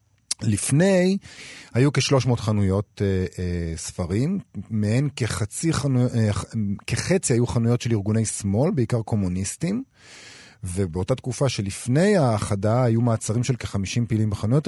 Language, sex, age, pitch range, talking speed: Hebrew, male, 40-59, 100-125 Hz, 120 wpm